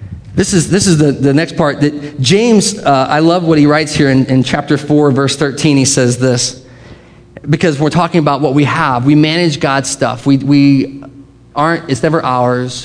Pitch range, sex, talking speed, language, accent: 125-155 Hz, male, 200 wpm, English, American